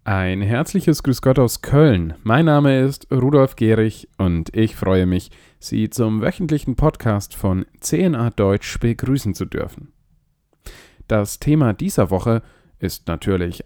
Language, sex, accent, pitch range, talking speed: German, male, German, 95-135 Hz, 135 wpm